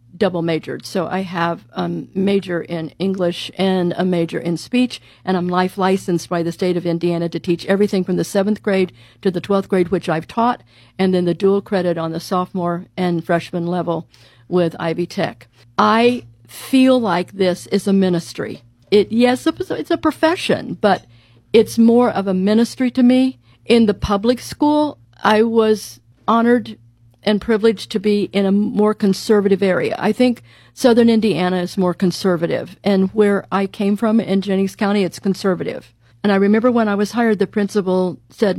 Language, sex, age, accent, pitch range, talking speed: English, female, 50-69, American, 170-210 Hz, 175 wpm